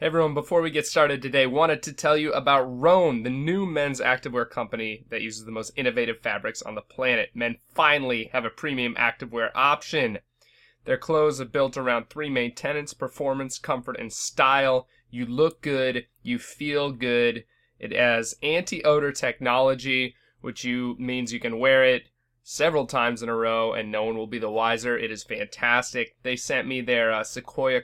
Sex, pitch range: male, 115-135 Hz